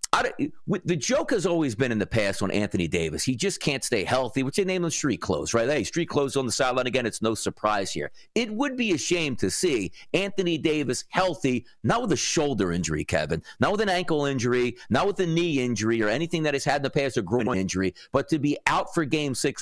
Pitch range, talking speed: 125-170 Hz, 245 wpm